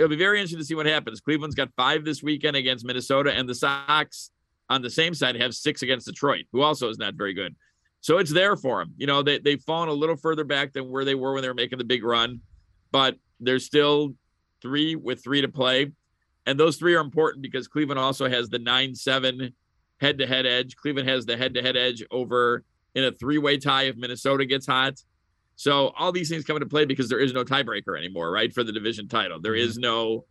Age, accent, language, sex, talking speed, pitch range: 50-69, American, English, male, 235 wpm, 120-145 Hz